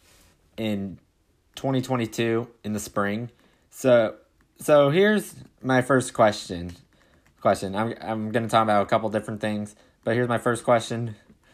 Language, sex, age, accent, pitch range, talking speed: English, male, 20-39, American, 95-115 Hz, 135 wpm